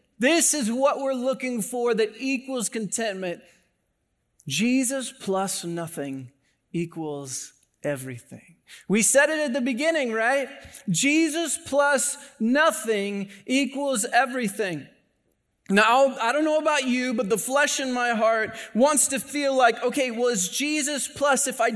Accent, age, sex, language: American, 30-49, male, English